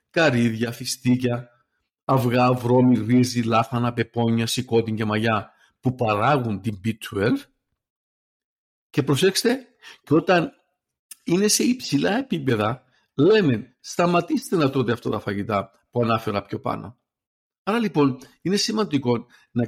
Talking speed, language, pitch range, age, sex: 115 wpm, Greek, 115-175 Hz, 50-69, male